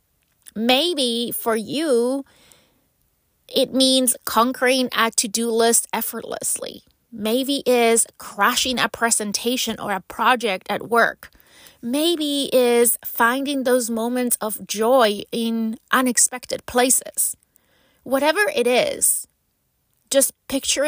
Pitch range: 220-255 Hz